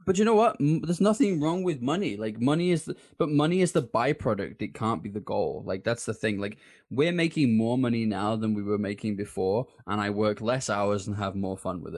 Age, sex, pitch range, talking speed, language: 20-39, male, 105-140 Hz, 235 wpm, English